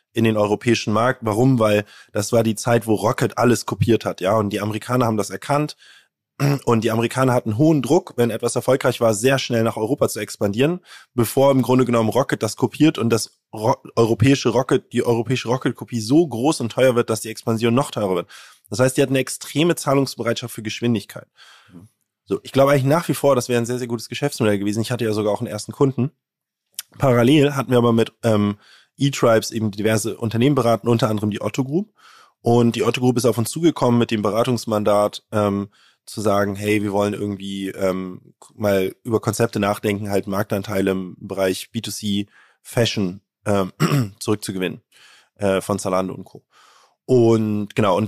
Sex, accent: male, German